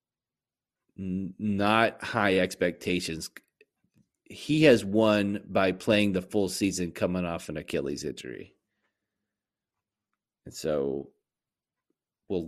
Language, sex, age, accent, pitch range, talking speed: English, male, 30-49, American, 95-105 Hz, 90 wpm